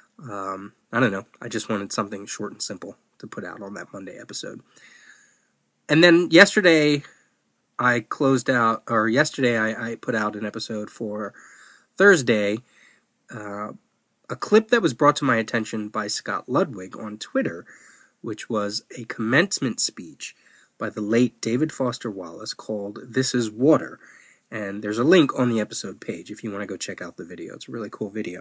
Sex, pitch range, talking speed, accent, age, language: male, 110-135 Hz, 180 wpm, American, 20-39, English